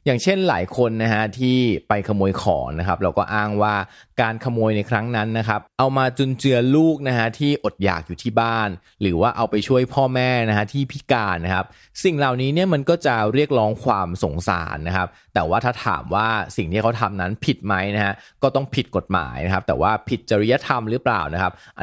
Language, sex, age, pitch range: Thai, male, 20-39, 95-120 Hz